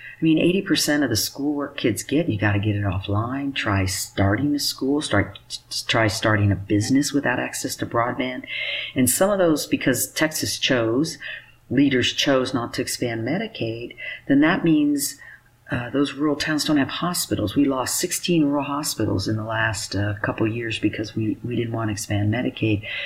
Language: English